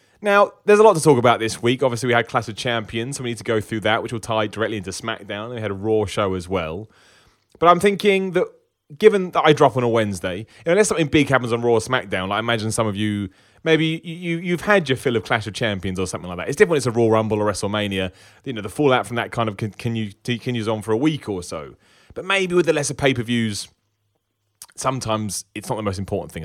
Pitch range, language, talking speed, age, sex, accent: 105-140 Hz, English, 270 wpm, 30-49, male, British